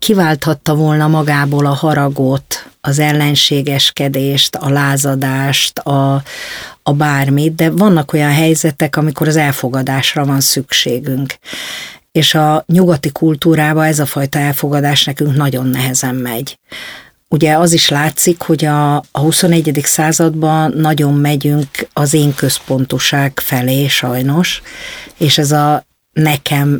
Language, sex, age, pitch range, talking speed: Hungarian, female, 50-69, 135-155 Hz, 120 wpm